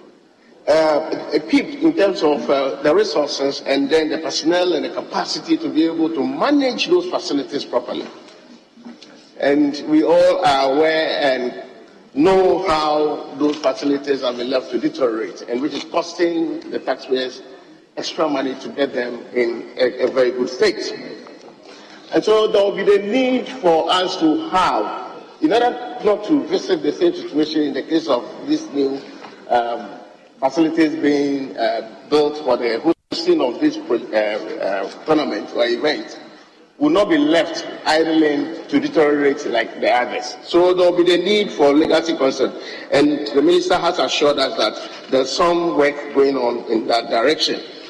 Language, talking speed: English, 165 wpm